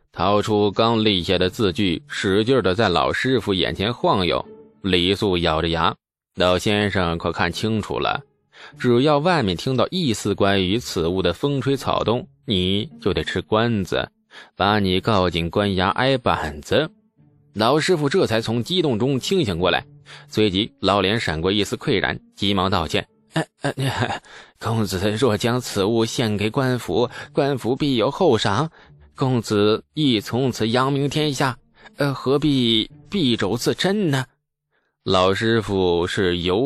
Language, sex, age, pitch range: Chinese, male, 20-39, 100-140 Hz